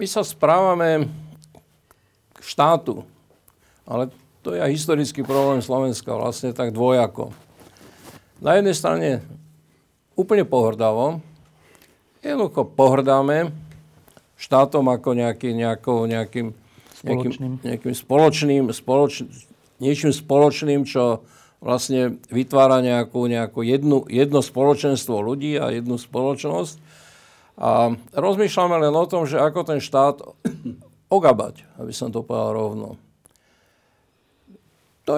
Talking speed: 105 wpm